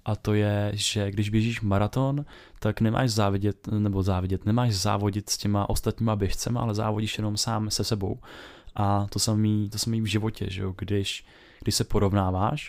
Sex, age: male, 20-39